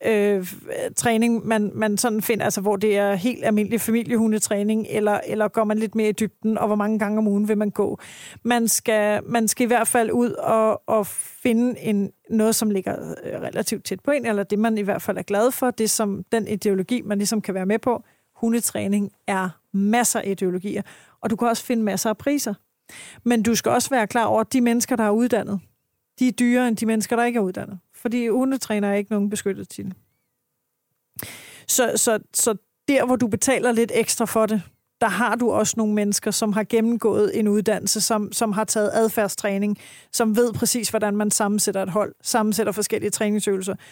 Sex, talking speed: female, 200 wpm